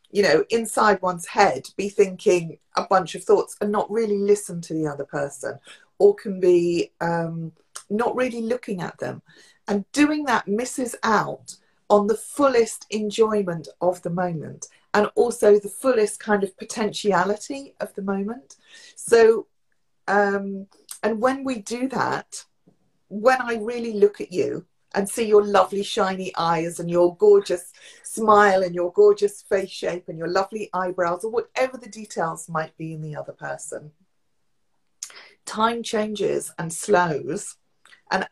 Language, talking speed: English, 150 wpm